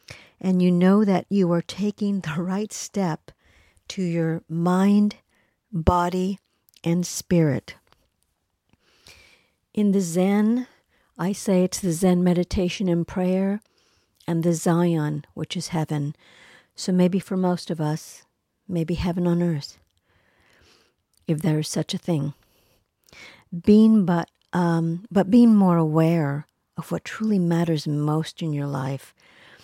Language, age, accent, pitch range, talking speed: English, 50-69, American, 155-195 Hz, 130 wpm